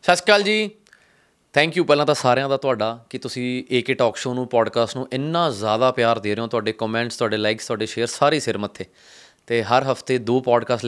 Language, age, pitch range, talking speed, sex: Punjabi, 20-39, 120-145 Hz, 210 wpm, male